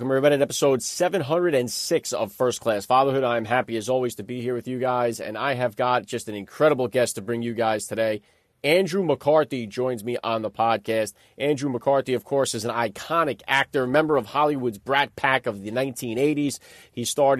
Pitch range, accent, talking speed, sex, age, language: 125-150 Hz, American, 200 wpm, male, 40-59, English